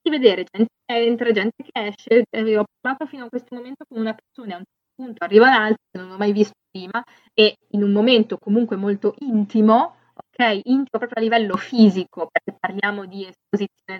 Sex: female